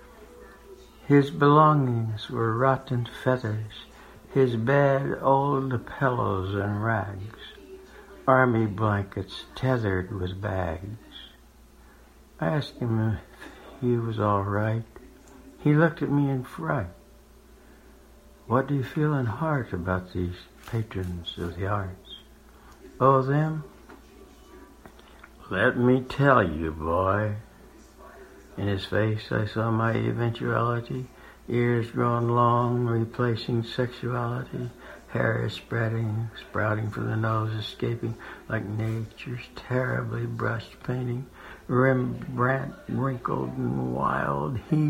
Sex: male